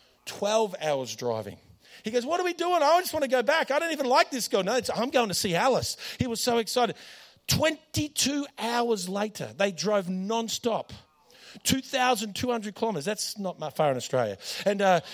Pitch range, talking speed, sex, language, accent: 180-240 Hz, 190 wpm, male, Danish, Australian